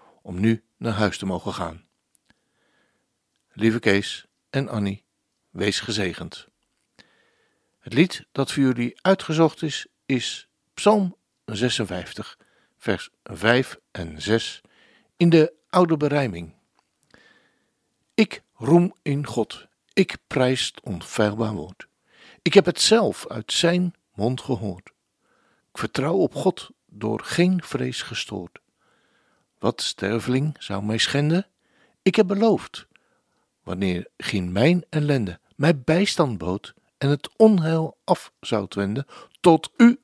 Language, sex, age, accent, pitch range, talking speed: Dutch, male, 60-79, Dutch, 105-175 Hz, 115 wpm